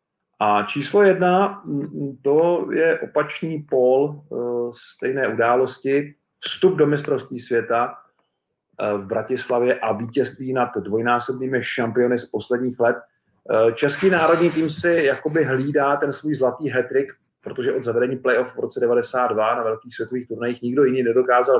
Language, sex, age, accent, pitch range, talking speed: Czech, male, 40-59, native, 120-145 Hz, 130 wpm